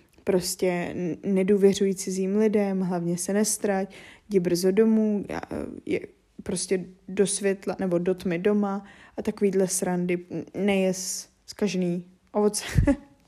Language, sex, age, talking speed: Czech, female, 10-29, 115 wpm